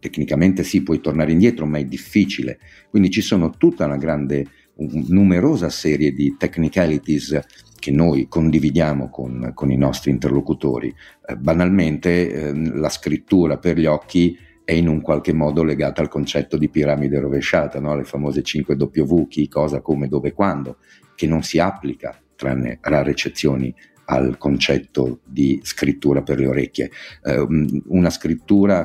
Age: 50-69